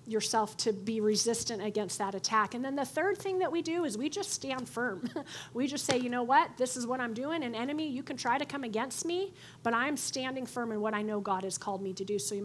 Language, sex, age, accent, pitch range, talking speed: English, female, 30-49, American, 220-280 Hz, 270 wpm